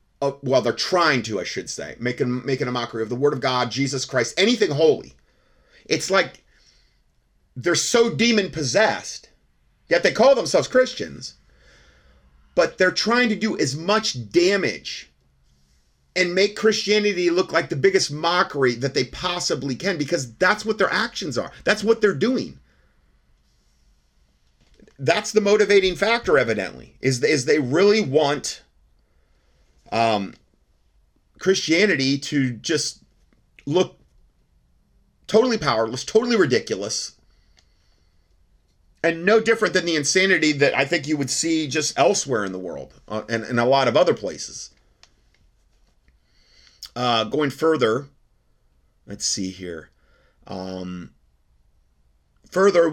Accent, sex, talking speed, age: American, male, 125 wpm, 30-49